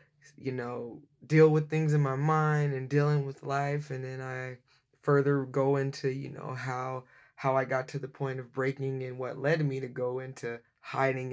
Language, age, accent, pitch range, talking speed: English, 20-39, American, 130-140 Hz, 195 wpm